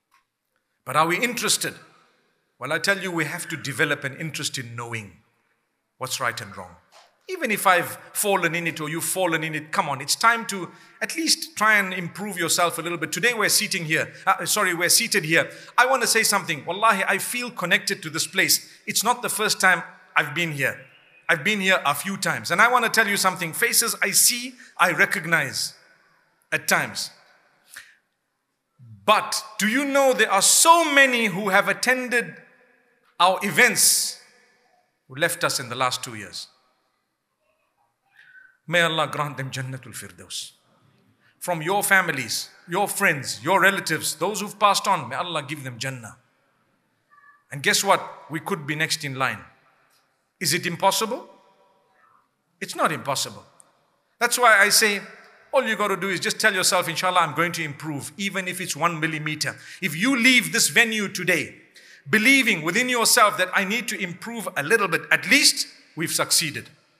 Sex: male